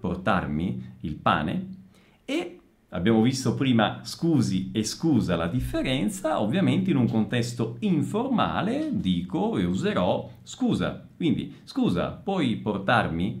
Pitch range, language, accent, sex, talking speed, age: 100-140 Hz, Italian, native, male, 110 wpm, 40-59